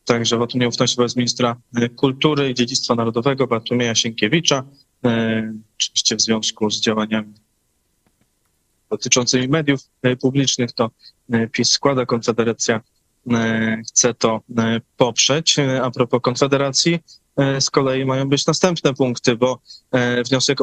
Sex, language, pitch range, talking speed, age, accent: male, Polish, 120-140 Hz, 110 wpm, 20-39, native